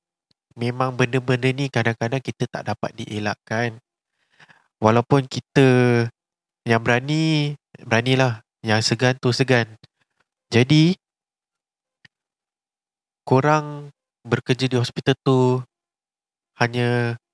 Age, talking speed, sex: 20-39, 85 wpm, male